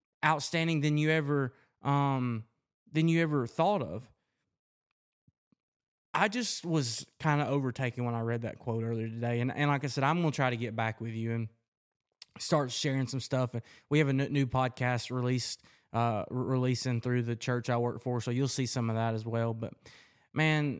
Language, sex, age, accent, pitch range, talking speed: English, male, 20-39, American, 115-135 Hz, 190 wpm